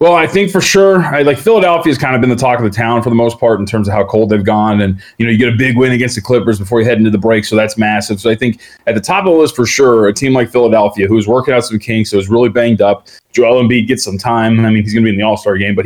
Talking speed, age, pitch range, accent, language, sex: 350 wpm, 30-49, 110-130 Hz, American, English, male